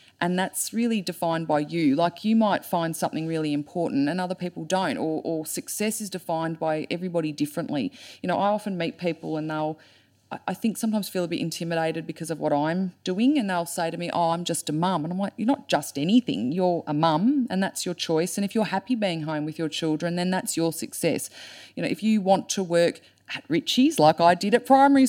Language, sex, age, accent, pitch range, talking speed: English, female, 30-49, Australian, 165-230 Hz, 230 wpm